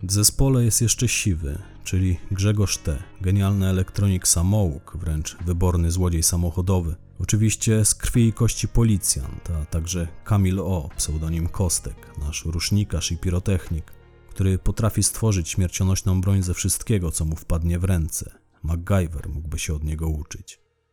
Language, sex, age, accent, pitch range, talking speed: Polish, male, 40-59, native, 85-100 Hz, 140 wpm